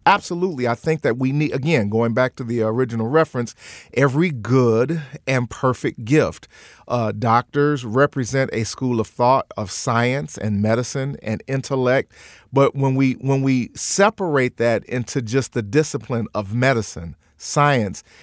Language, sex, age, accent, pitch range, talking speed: English, male, 40-59, American, 120-155 Hz, 150 wpm